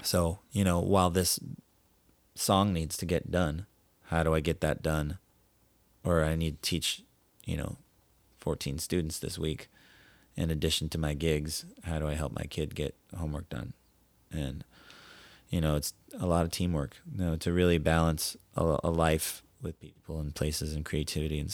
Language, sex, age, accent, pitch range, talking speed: English, male, 30-49, American, 75-85 Hz, 180 wpm